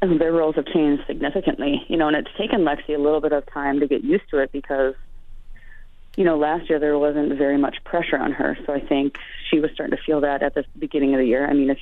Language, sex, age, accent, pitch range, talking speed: English, female, 30-49, American, 135-150 Hz, 265 wpm